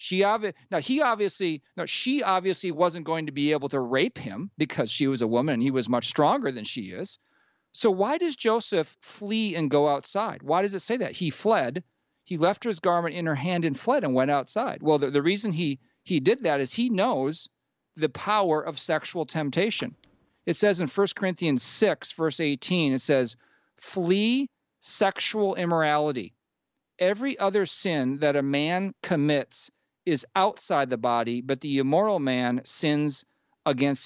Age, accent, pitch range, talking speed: 40-59, American, 140-200 Hz, 180 wpm